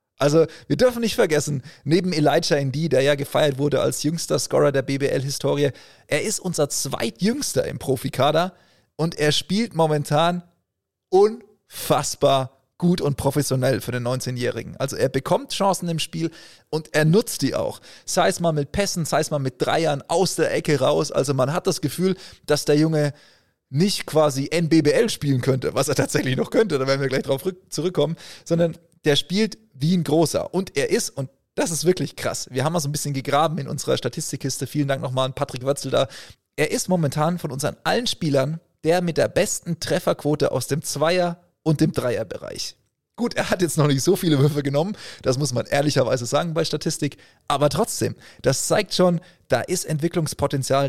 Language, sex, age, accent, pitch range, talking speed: German, male, 30-49, German, 140-170 Hz, 185 wpm